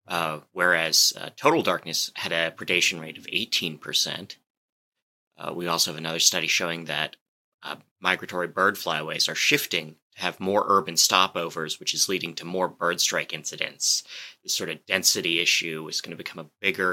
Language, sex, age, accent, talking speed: English, male, 30-49, American, 175 wpm